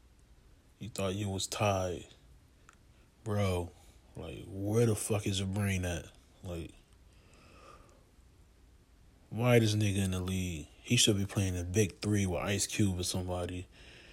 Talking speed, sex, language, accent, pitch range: 140 wpm, male, English, American, 85-105 Hz